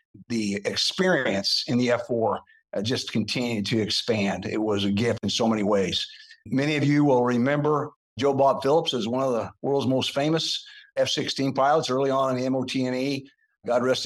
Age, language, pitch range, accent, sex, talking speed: 50-69, English, 115-145 Hz, American, male, 180 wpm